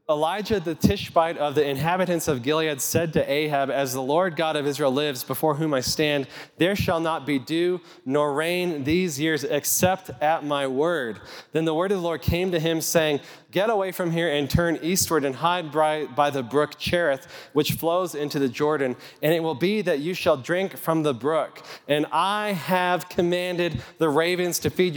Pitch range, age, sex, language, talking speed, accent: 150-180 Hz, 30-49, male, English, 200 wpm, American